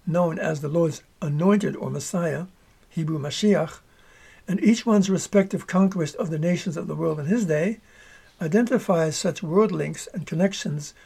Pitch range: 160-195 Hz